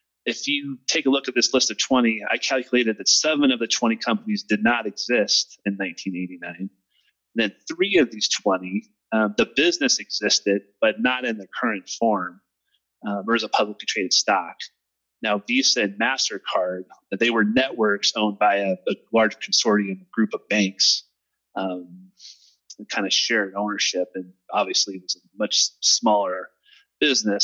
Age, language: 30-49, English